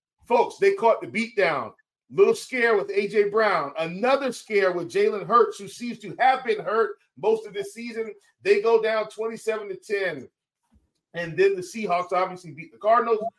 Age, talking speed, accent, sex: 40-59, 175 wpm, American, male